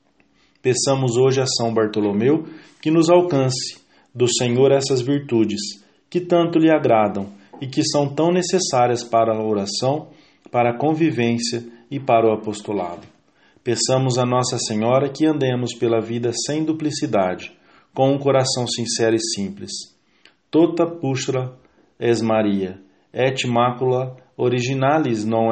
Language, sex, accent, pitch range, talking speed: English, male, Brazilian, 110-140 Hz, 125 wpm